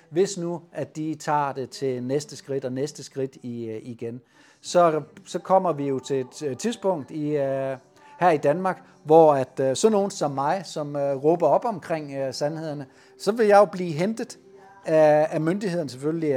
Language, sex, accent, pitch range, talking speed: Danish, male, native, 135-165 Hz, 155 wpm